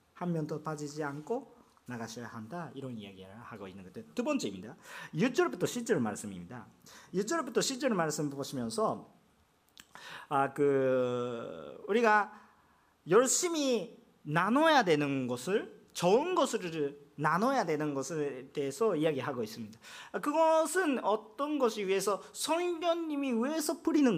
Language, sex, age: Korean, male, 40-59